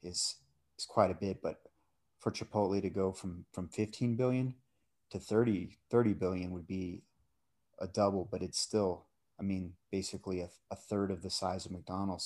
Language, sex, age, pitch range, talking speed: English, male, 30-49, 90-100 Hz, 175 wpm